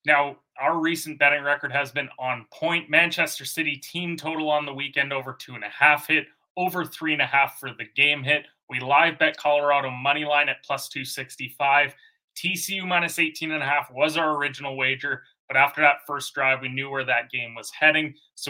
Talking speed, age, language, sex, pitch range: 210 wpm, 30-49, English, male, 140-165 Hz